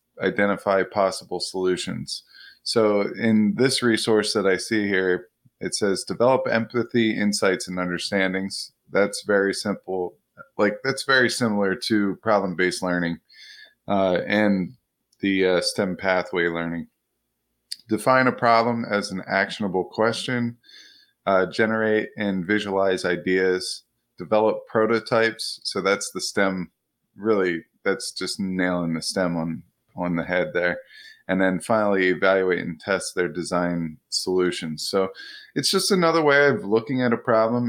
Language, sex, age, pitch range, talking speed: English, male, 20-39, 90-110 Hz, 130 wpm